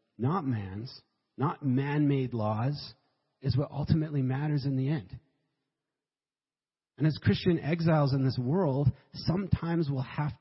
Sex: male